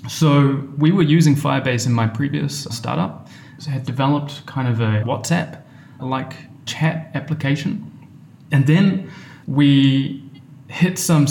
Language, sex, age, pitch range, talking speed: English, male, 20-39, 125-145 Hz, 125 wpm